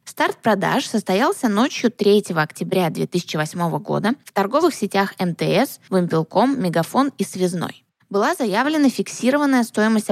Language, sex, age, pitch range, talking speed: Russian, female, 20-39, 175-230 Hz, 120 wpm